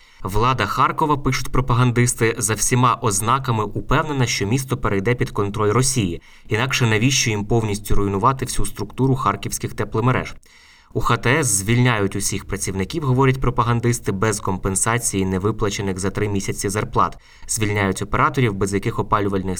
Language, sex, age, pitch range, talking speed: Ukrainian, male, 20-39, 100-125 Hz, 130 wpm